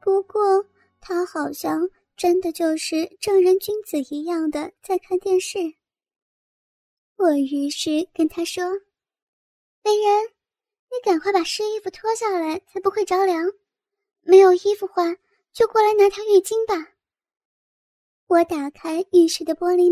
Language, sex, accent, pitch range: Chinese, male, native, 325-390 Hz